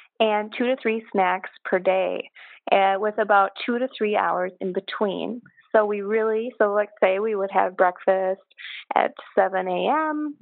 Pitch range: 195-245 Hz